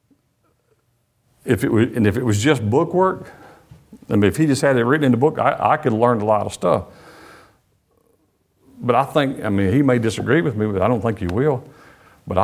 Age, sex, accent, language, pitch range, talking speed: 50-69, male, American, English, 105-135 Hz, 220 wpm